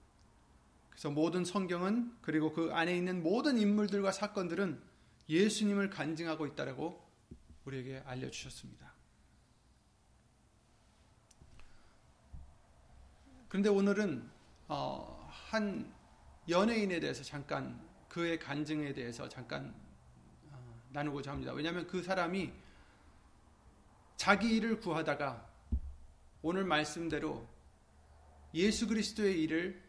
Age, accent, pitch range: 30-49, native, 130-200 Hz